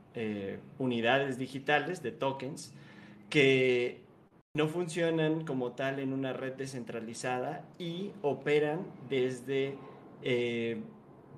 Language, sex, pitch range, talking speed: Spanish, male, 125-150 Hz, 95 wpm